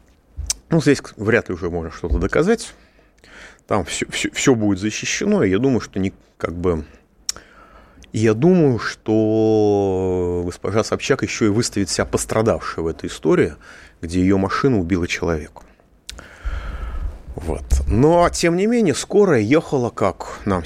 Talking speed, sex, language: 130 wpm, male, Russian